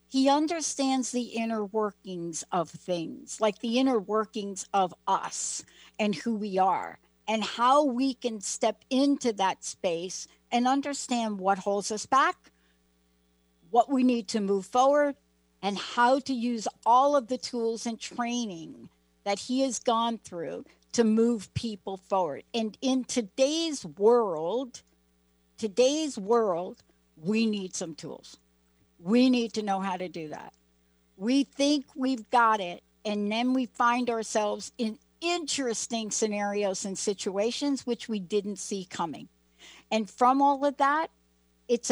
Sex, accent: female, American